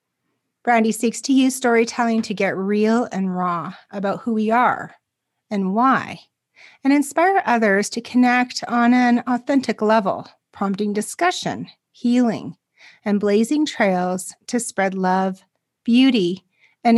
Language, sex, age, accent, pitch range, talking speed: English, female, 30-49, American, 200-260 Hz, 125 wpm